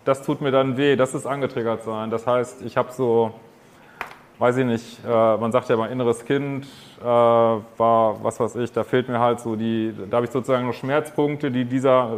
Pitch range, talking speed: 120-140 Hz, 200 wpm